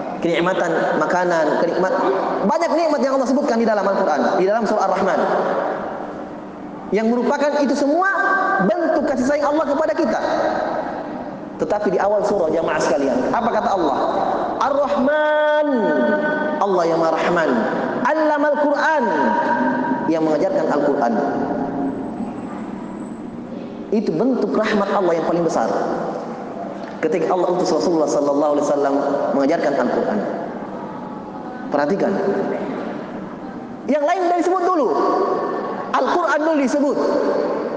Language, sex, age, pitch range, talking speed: Indonesian, male, 20-39, 210-305 Hz, 105 wpm